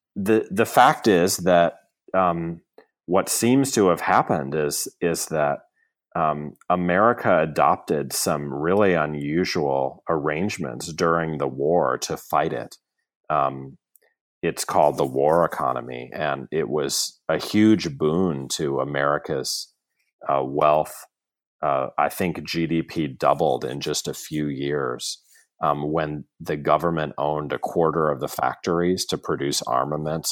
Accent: American